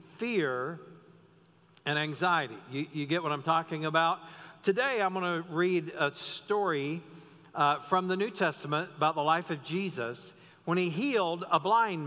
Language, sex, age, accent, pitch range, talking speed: English, male, 50-69, American, 145-190 Hz, 160 wpm